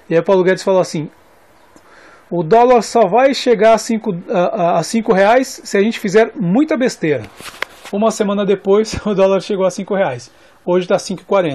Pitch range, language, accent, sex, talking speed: 180-230 Hz, Portuguese, Brazilian, male, 160 wpm